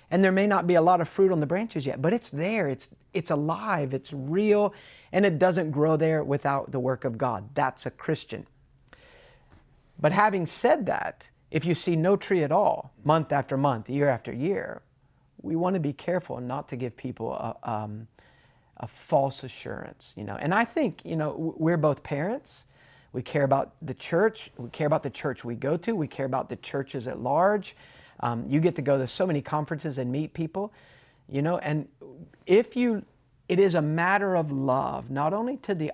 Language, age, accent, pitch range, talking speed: English, 40-59, American, 135-180 Hz, 205 wpm